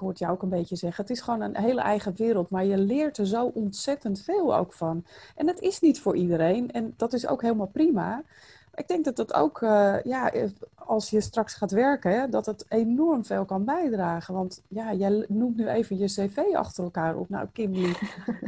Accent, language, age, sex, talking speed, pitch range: Dutch, Dutch, 30-49, female, 220 wpm, 195-250 Hz